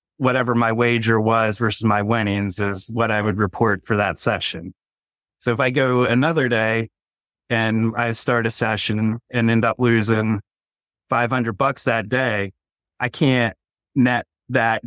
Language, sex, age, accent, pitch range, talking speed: English, male, 30-49, American, 105-120 Hz, 155 wpm